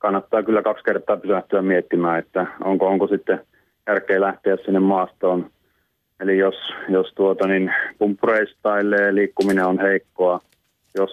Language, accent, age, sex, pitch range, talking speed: Finnish, native, 30-49, male, 95-110 Hz, 130 wpm